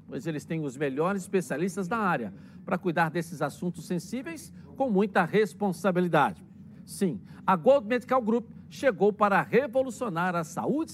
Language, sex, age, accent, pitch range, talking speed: Portuguese, male, 60-79, Brazilian, 180-225 Hz, 145 wpm